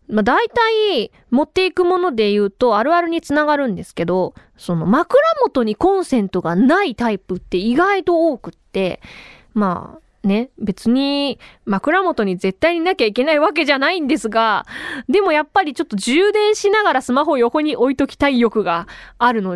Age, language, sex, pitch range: 20-39, Japanese, female, 215-350 Hz